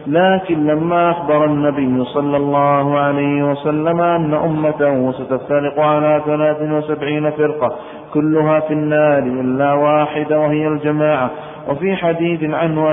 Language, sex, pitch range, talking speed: Arabic, male, 145-155 Hz, 115 wpm